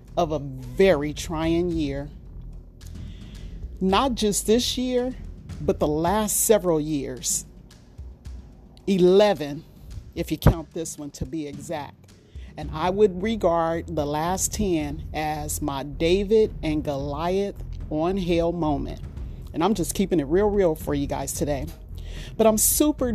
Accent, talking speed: American, 135 wpm